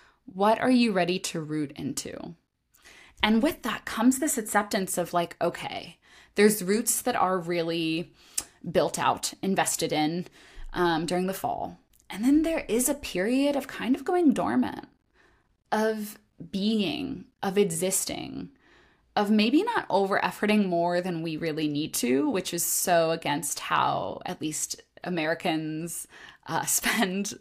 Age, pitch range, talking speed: 20-39, 165-220 Hz, 140 wpm